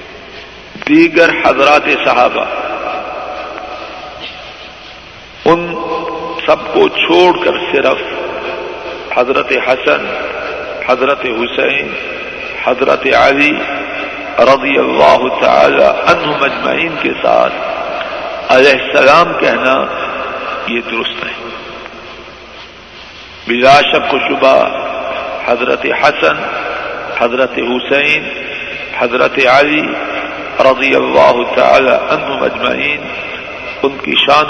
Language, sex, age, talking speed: Urdu, male, 50-69, 80 wpm